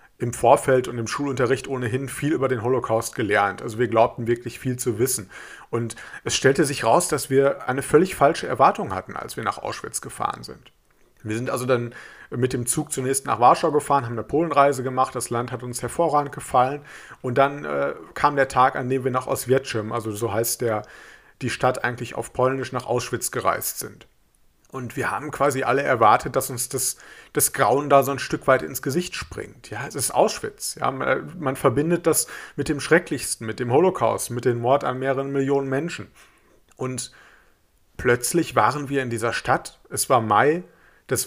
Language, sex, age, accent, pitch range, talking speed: German, male, 40-59, German, 120-140 Hz, 190 wpm